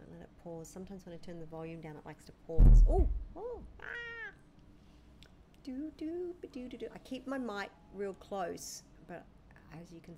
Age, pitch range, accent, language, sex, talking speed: 40-59, 170-235 Hz, Australian, English, female, 195 wpm